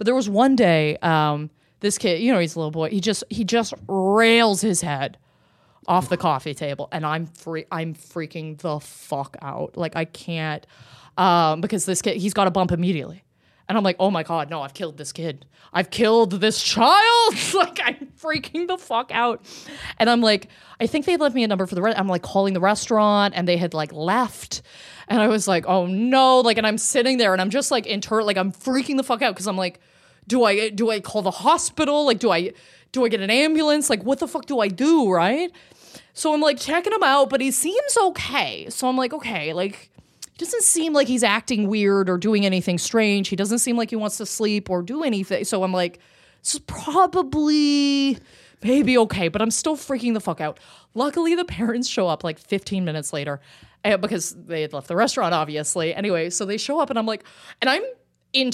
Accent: American